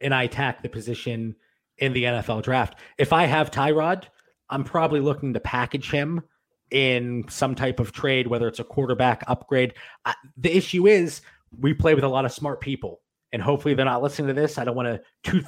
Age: 30-49